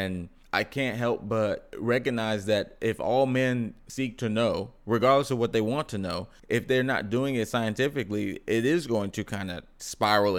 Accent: American